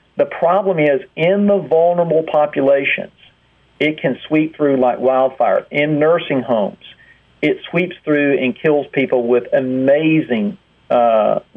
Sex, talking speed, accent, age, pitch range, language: male, 130 wpm, American, 50-69, 125-155 Hz, English